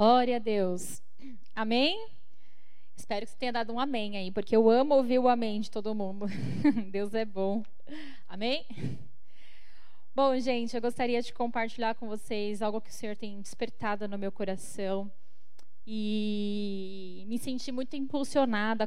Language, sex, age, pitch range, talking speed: Portuguese, female, 10-29, 210-240 Hz, 150 wpm